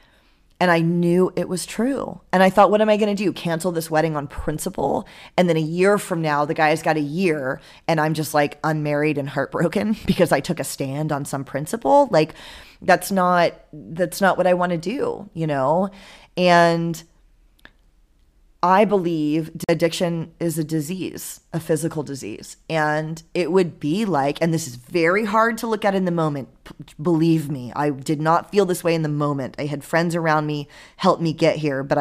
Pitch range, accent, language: 145-175 Hz, American, English